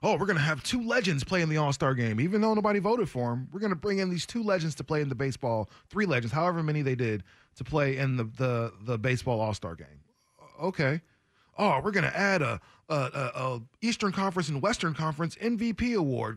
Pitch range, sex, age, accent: 120-175 Hz, male, 20-39, American